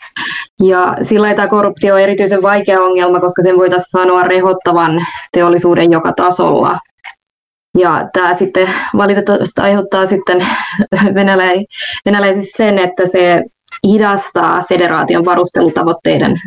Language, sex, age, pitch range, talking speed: Finnish, female, 20-39, 180-200 Hz, 110 wpm